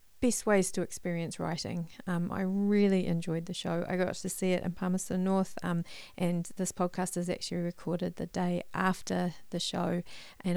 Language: English